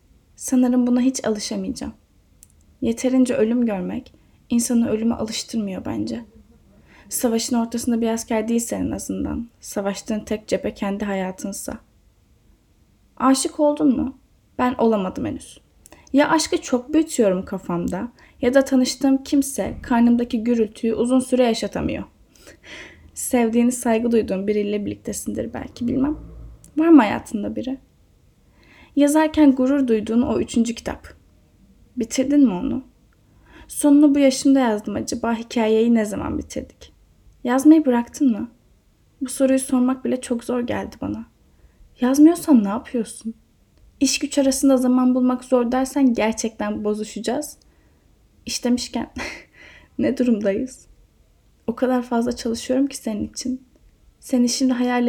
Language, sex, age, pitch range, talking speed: Turkish, female, 10-29, 225-265 Hz, 115 wpm